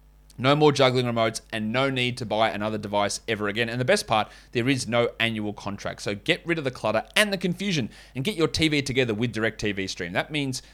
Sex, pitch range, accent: male, 110-135 Hz, Australian